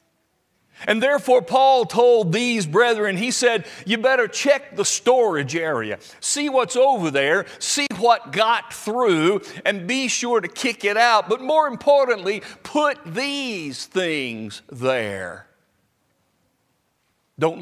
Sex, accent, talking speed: male, American, 125 wpm